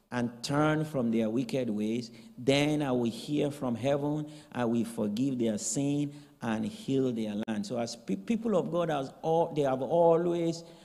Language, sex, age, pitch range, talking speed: English, male, 50-69, 125-160 Hz, 170 wpm